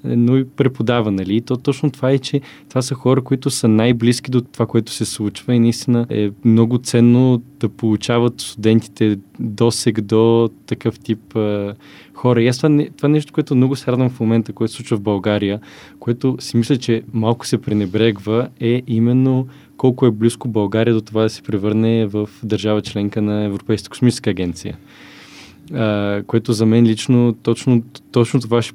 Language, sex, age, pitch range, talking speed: Bulgarian, male, 20-39, 105-120 Hz, 170 wpm